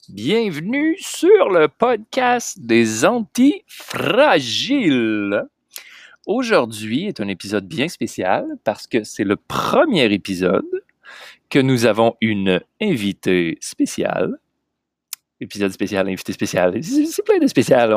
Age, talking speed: 30-49, 105 wpm